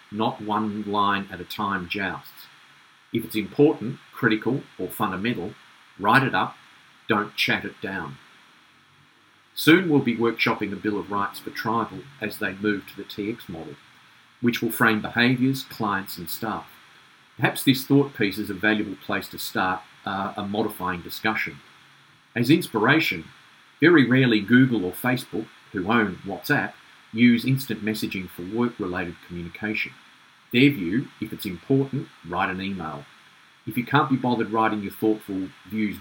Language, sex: English, male